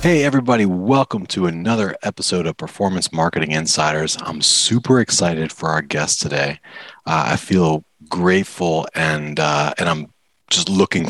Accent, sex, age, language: American, male, 30-49, English